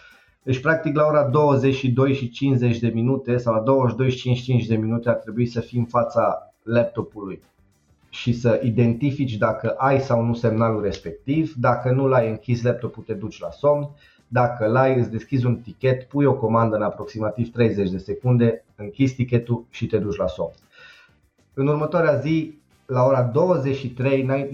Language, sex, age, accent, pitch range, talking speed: Romanian, male, 30-49, native, 110-130 Hz, 155 wpm